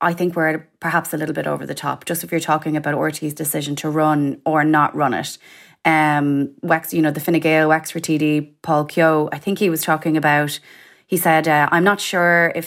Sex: female